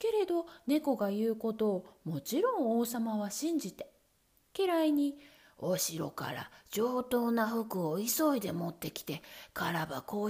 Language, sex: Japanese, female